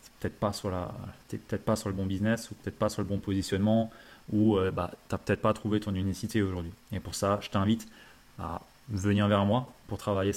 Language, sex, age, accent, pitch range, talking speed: French, male, 20-39, French, 100-115 Hz, 215 wpm